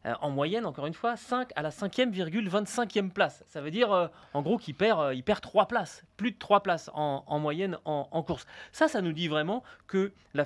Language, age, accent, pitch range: French, 30-49, French, 145-210 Hz